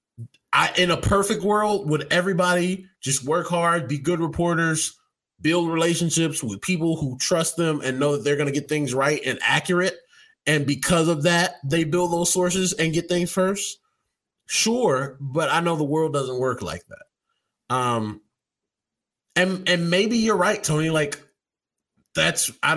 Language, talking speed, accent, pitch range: English, 165 wpm, American, 130-170 Hz